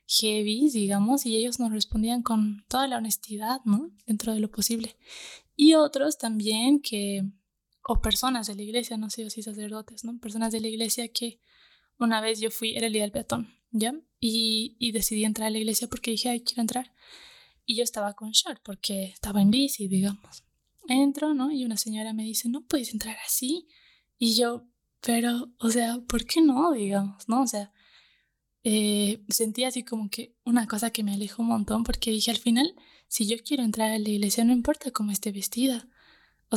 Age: 10-29